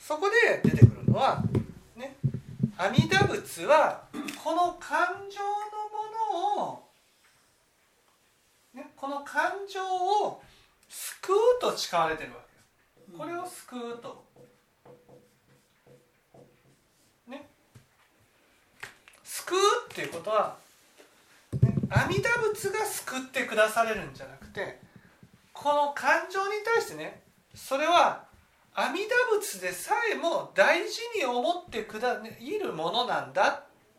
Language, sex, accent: Japanese, male, native